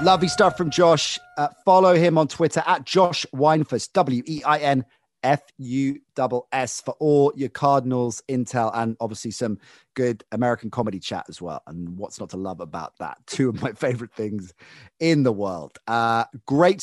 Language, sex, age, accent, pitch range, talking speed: English, male, 30-49, British, 110-155 Hz, 155 wpm